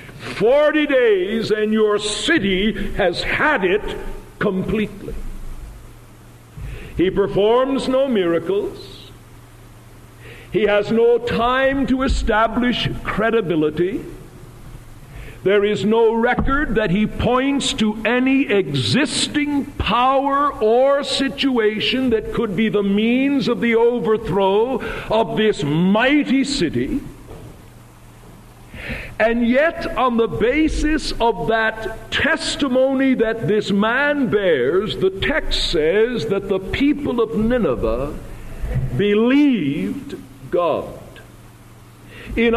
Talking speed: 95 wpm